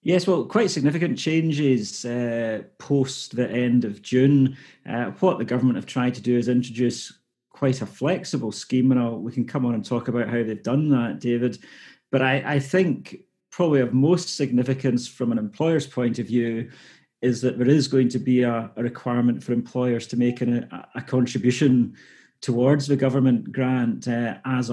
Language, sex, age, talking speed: English, male, 30-49, 180 wpm